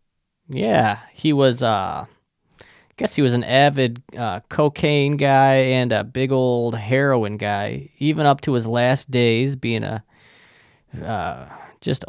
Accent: American